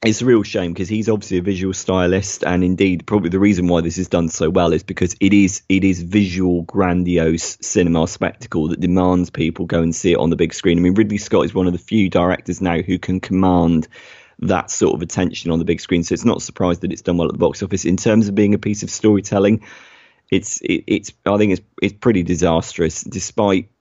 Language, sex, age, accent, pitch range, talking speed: English, male, 30-49, British, 90-105 Hz, 235 wpm